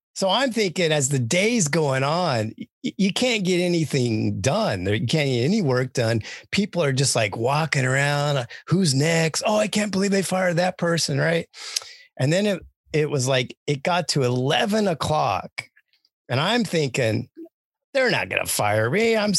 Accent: American